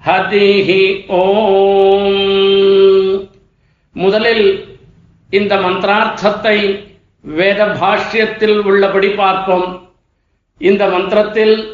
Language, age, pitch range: Tamil, 50-69, 195-215 Hz